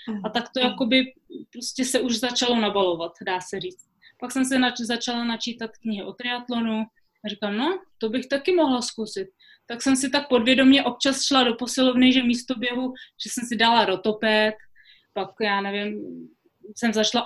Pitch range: 210-250 Hz